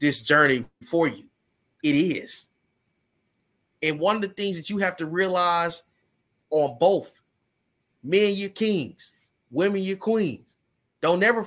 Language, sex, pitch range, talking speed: English, male, 150-205 Hz, 135 wpm